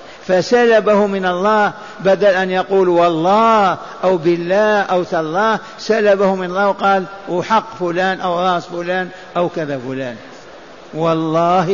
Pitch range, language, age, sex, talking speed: 180-200 Hz, Arabic, 60-79, male, 125 wpm